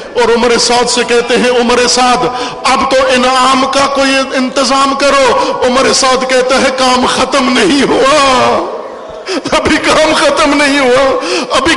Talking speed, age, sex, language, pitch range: 150 wpm, 50-69, male, Urdu, 250-295 Hz